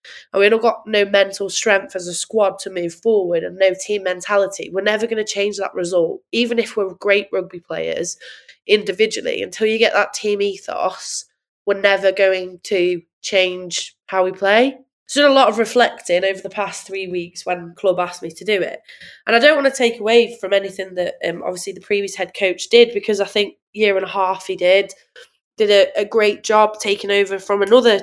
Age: 20-39